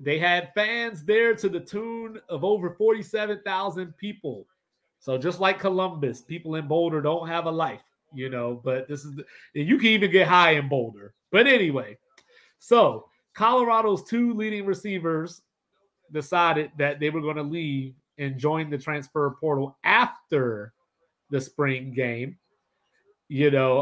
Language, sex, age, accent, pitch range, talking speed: English, male, 30-49, American, 130-185 Hz, 150 wpm